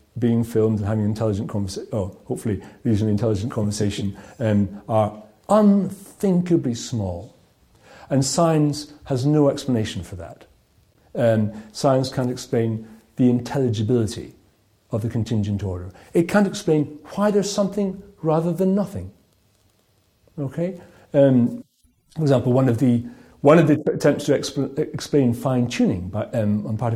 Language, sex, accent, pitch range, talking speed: English, male, British, 105-150 Hz, 140 wpm